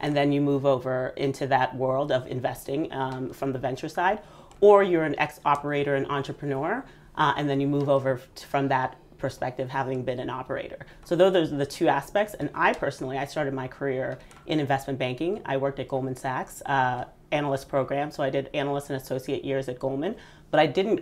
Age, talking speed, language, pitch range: 30-49, 205 wpm, English, 135-155 Hz